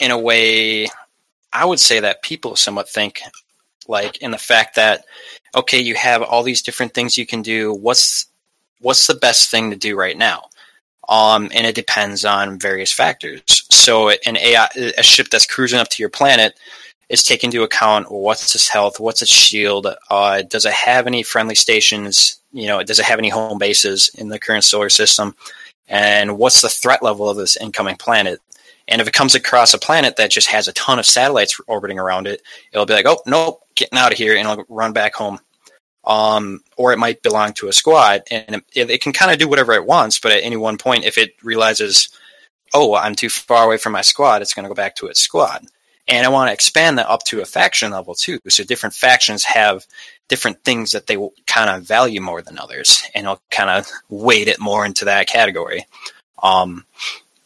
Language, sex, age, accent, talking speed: English, male, 20-39, American, 215 wpm